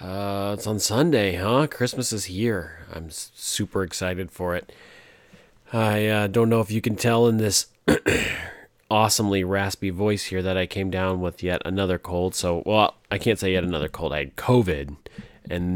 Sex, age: male, 30-49